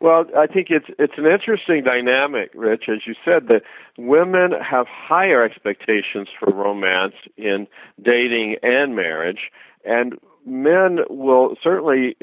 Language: English